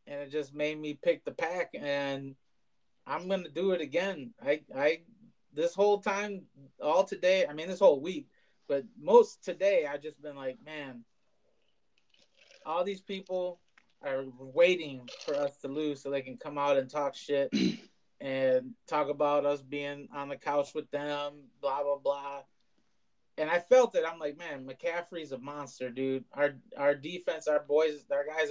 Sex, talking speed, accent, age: male, 175 wpm, American, 30-49